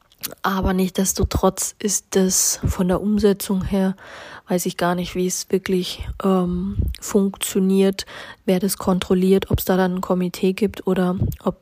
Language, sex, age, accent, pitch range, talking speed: German, female, 30-49, German, 175-195 Hz, 150 wpm